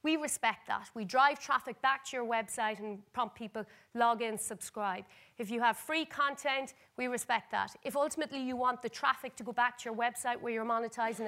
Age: 30-49